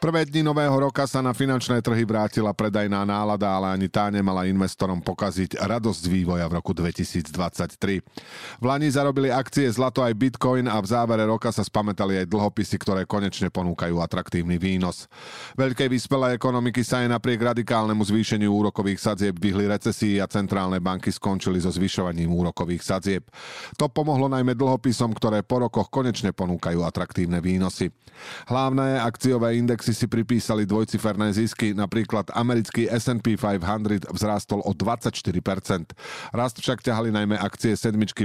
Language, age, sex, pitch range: Slovak, 40-59, male, 95-120 Hz